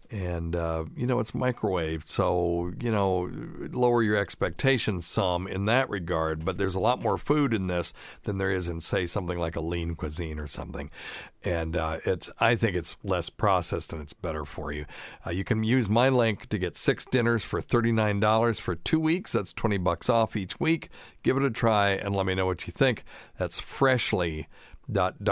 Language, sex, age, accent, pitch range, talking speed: English, male, 50-69, American, 85-110 Hz, 195 wpm